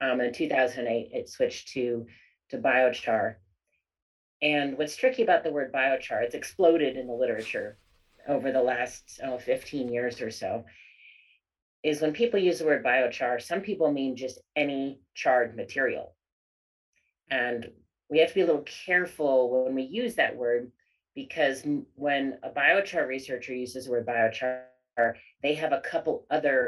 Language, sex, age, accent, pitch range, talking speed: English, female, 30-49, American, 120-180 Hz, 155 wpm